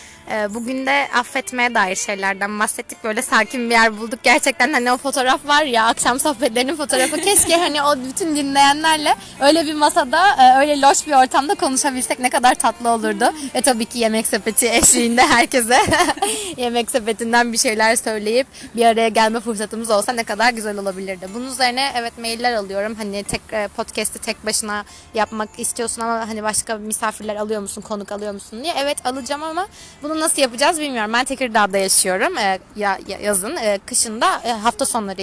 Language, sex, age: Turkish, female, 20-39